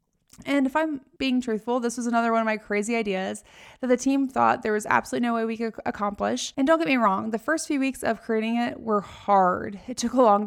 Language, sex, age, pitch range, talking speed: English, female, 20-39, 210-255 Hz, 245 wpm